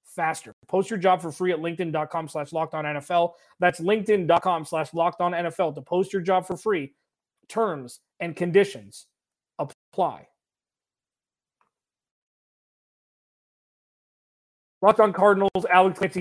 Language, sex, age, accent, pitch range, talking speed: English, male, 30-49, American, 150-185 Hz, 120 wpm